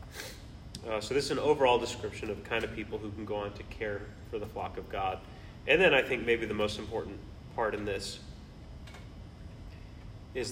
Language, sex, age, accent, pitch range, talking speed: English, male, 30-49, American, 95-120 Hz, 200 wpm